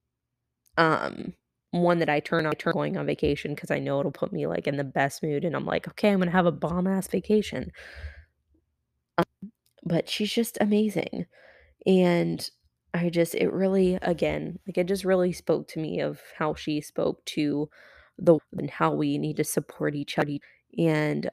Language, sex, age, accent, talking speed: English, female, 20-39, American, 190 wpm